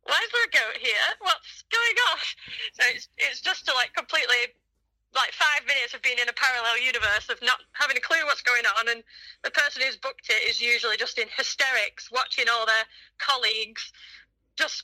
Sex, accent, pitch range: female, British, 230-285 Hz